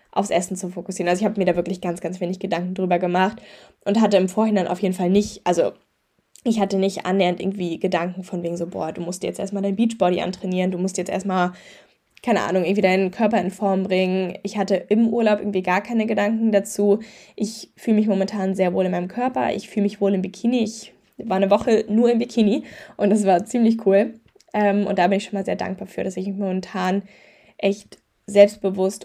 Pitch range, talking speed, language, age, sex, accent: 185-205 Hz, 215 wpm, German, 10-29, female, German